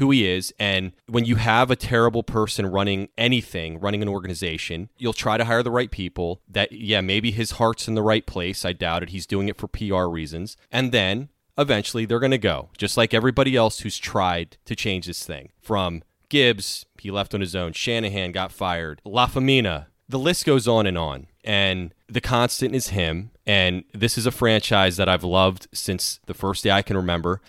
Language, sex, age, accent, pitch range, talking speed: English, male, 30-49, American, 90-115 Hz, 205 wpm